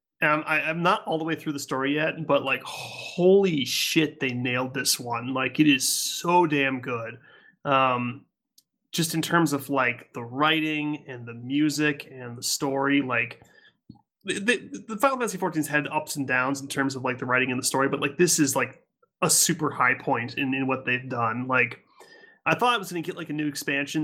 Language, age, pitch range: English, 30-49, 140-175 Hz